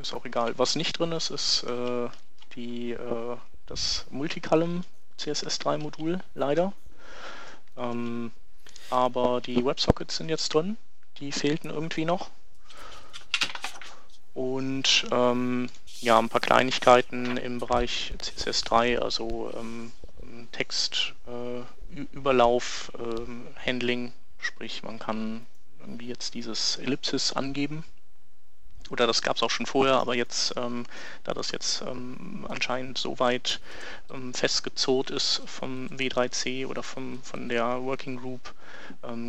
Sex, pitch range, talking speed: male, 120-130 Hz, 120 wpm